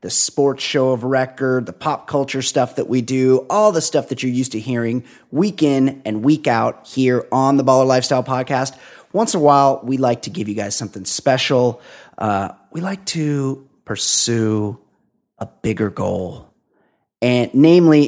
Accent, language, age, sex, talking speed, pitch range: American, English, 30-49, male, 175 wpm, 120-155 Hz